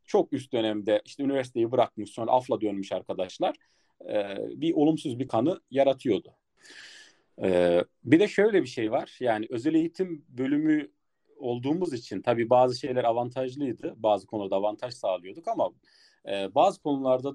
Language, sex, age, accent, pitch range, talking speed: Turkish, male, 40-59, native, 110-155 Hz, 130 wpm